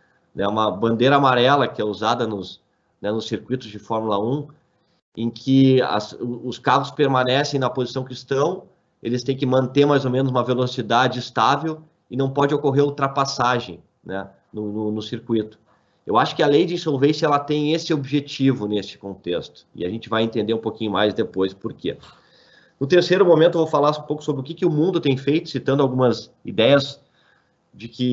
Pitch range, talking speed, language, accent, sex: 115-145 Hz, 185 wpm, Portuguese, Brazilian, male